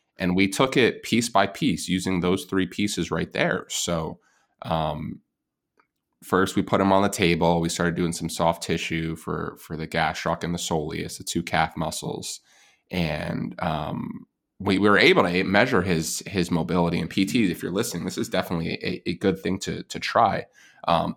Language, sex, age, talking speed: English, male, 20-39, 185 wpm